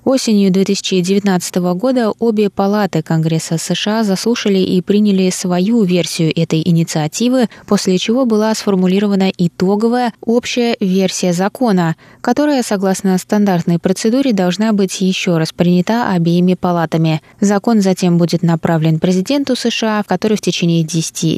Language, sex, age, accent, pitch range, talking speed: Russian, female, 20-39, native, 165-210 Hz, 120 wpm